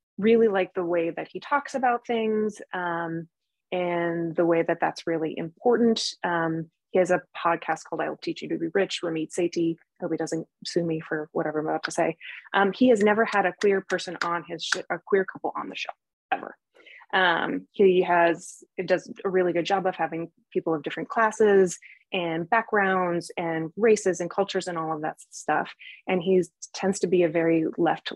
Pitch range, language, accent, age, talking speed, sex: 170-205 Hz, English, American, 20-39, 200 wpm, female